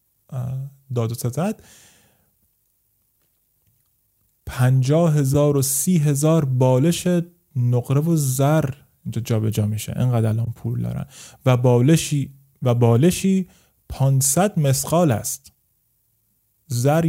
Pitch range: 110-145 Hz